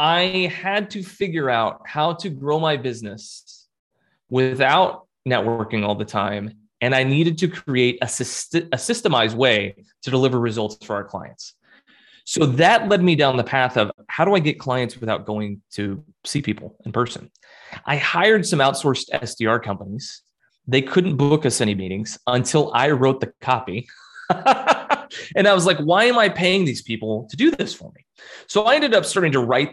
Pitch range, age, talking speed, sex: 120-175 Hz, 30-49, 180 wpm, male